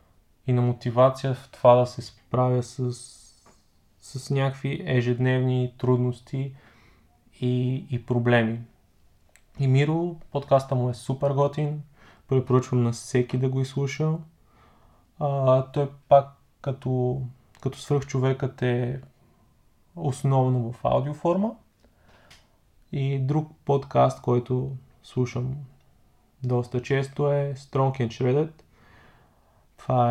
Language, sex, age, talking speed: Bulgarian, male, 20-39, 105 wpm